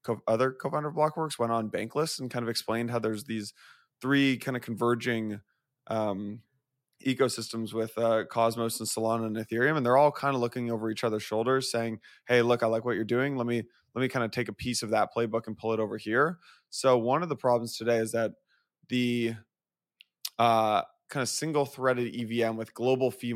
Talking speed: 205 wpm